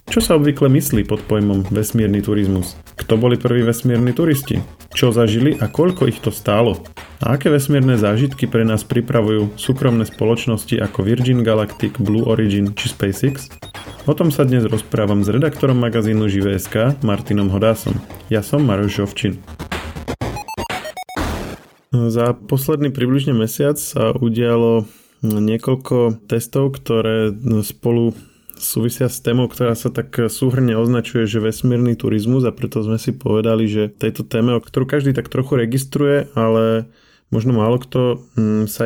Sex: male